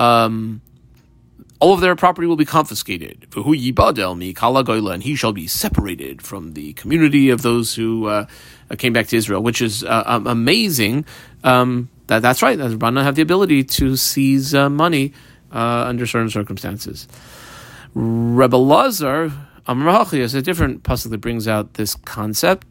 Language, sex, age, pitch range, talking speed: English, male, 30-49, 115-155 Hz, 150 wpm